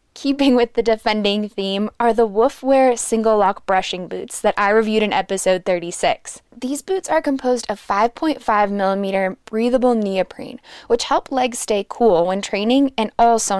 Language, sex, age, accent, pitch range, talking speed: English, female, 10-29, American, 200-255 Hz, 155 wpm